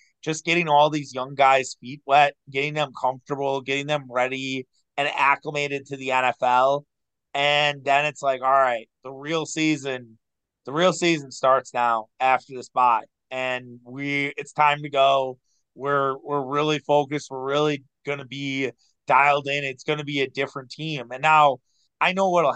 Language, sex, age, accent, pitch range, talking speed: English, male, 30-49, American, 130-150 Hz, 175 wpm